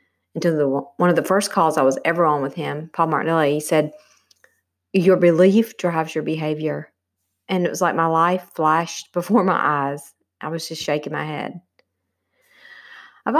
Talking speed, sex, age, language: 175 wpm, female, 40-59, English